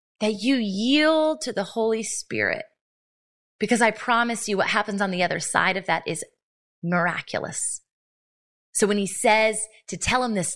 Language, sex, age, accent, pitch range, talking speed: English, female, 20-39, American, 185-230 Hz, 165 wpm